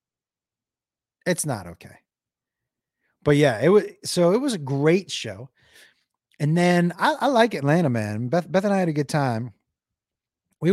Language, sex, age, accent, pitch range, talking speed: English, male, 30-49, American, 135-175 Hz, 160 wpm